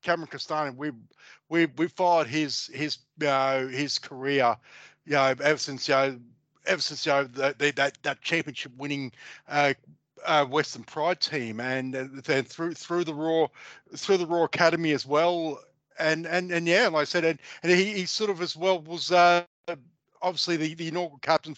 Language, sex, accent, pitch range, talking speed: English, male, Australian, 145-185 Hz, 185 wpm